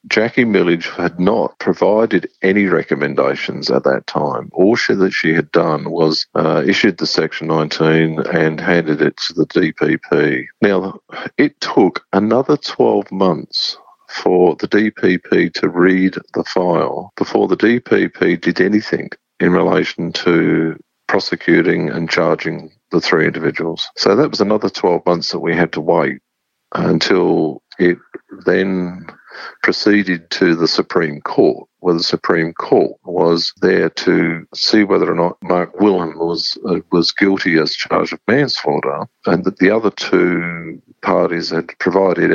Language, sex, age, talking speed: English, male, 50-69, 145 wpm